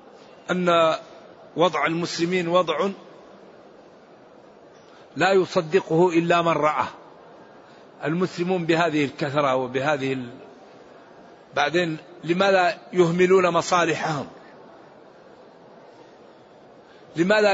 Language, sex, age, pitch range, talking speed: Arabic, male, 50-69, 165-190 Hz, 60 wpm